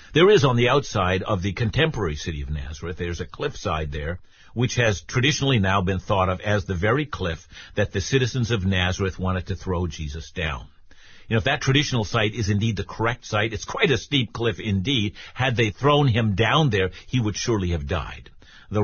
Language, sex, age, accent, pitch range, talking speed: English, male, 50-69, American, 95-130 Hz, 205 wpm